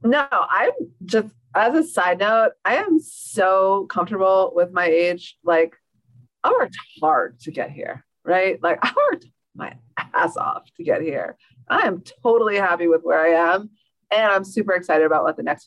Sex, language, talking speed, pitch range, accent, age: female, English, 180 wpm, 160-195 Hz, American, 30-49